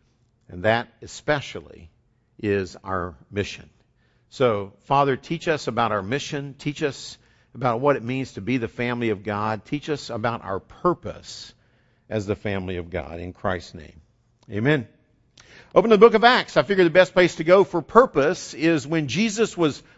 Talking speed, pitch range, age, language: 170 wpm, 120-175 Hz, 50-69, English